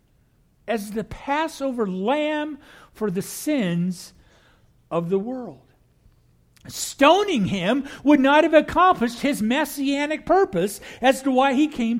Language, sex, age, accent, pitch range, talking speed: English, male, 50-69, American, 195-280 Hz, 120 wpm